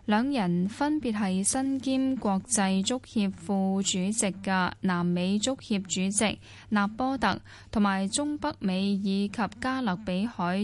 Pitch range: 185-230 Hz